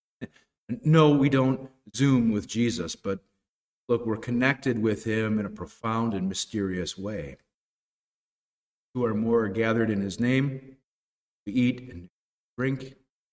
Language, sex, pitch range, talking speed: English, male, 100-125 Hz, 130 wpm